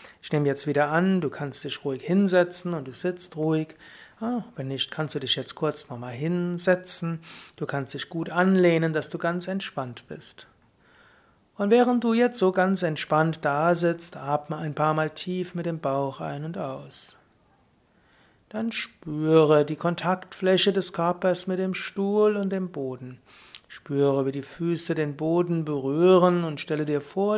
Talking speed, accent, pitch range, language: 165 wpm, German, 145-180 Hz, German